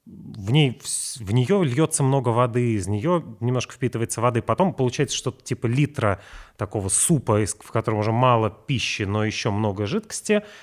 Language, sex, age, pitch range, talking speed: Russian, male, 30-49, 105-130 Hz, 155 wpm